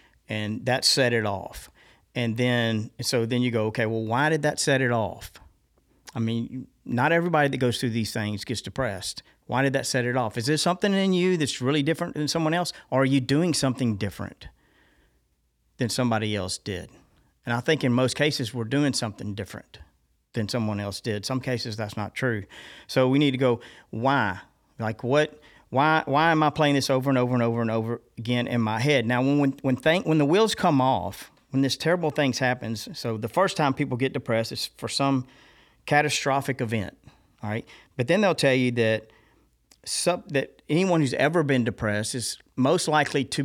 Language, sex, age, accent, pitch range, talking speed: English, male, 50-69, American, 115-145 Hz, 205 wpm